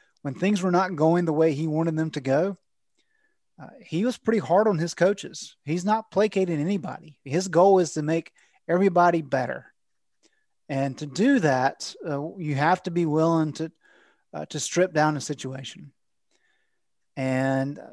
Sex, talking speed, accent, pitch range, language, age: male, 165 wpm, American, 150-185 Hz, English, 30-49